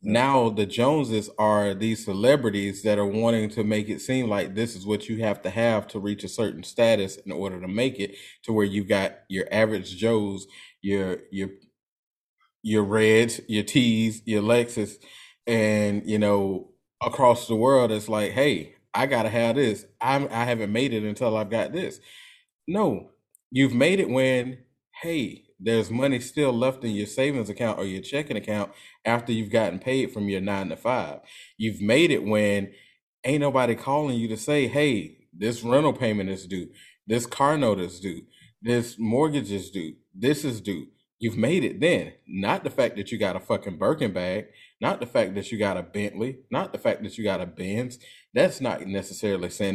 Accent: American